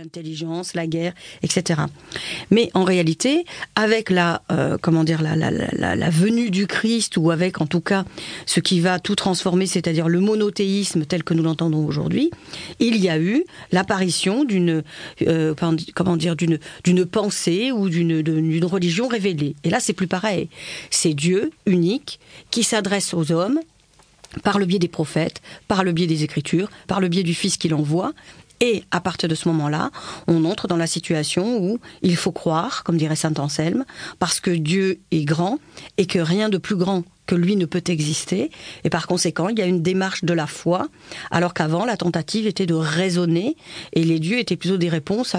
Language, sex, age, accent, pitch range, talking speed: French, female, 40-59, French, 165-195 Hz, 190 wpm